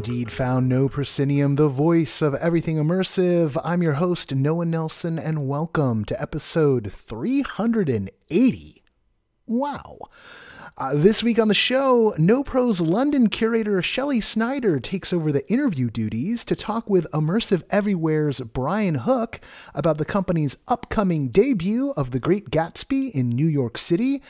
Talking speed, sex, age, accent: 140 wpm, male, 30-49, American